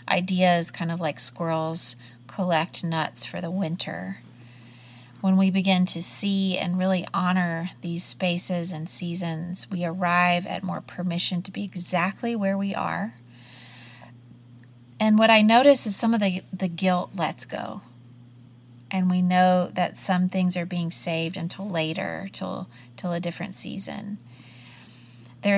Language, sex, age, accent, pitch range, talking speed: English, female, 30-49, American, 160-185 Hz, 145 wpm